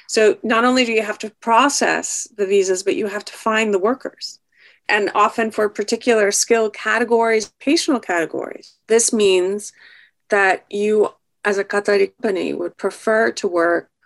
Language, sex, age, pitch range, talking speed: English, female, 30-49, 185-230 Hz, 155 wpm